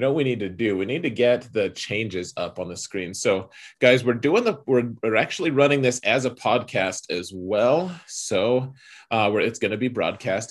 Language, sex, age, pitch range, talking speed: English, male, 30-49, 105-145 Hz, 215 wpm